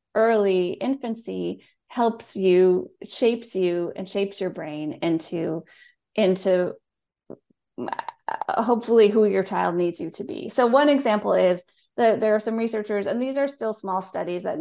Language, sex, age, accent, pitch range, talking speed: English, female, 30-49, American, 180-230 Hz, 150 wpm